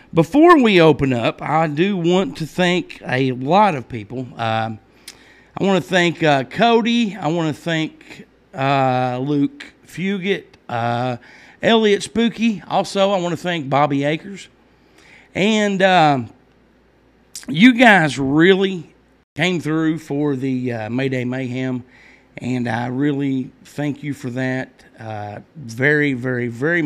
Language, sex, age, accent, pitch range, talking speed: English, male, 50-69, American, 130-185 Hz, 125 wpm